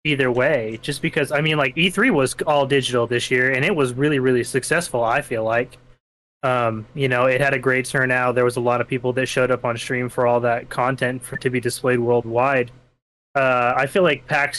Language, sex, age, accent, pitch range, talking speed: English, male, 20-39, American, 120-145 Hz, 225 wpm